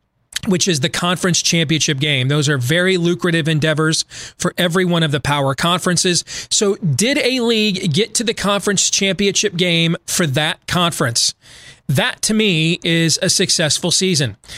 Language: English